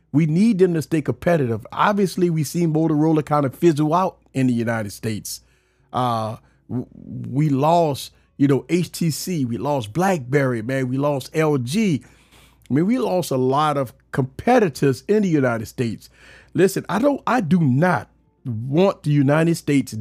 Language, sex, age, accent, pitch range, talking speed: English, male, 40-59, American, 125-170 Hz, 160 wpm